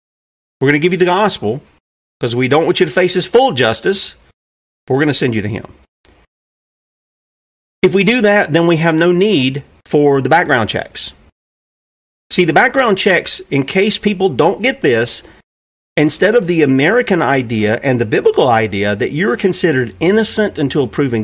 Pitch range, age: 115-180 Hz, 40-59